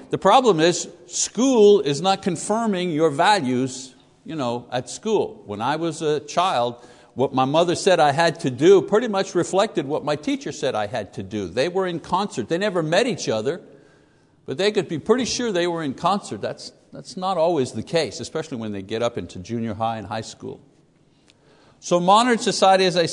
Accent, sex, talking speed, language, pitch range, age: American, male, 200 wpm, English, 135-195 Hz, 60-79